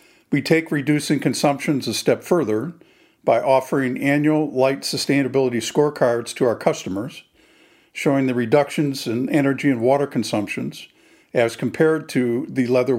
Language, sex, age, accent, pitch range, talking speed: English, male, 50-69, American, 125-150 Hz, 135 wpm